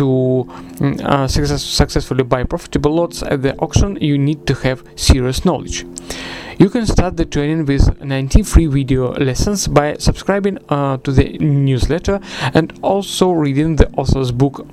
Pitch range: 130-155 Hz